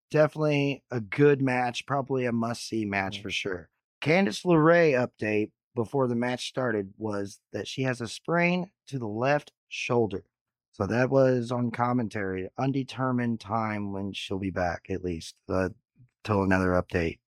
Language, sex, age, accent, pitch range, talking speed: English, male, 20-39, American, 120-160 Hz, 150 wpm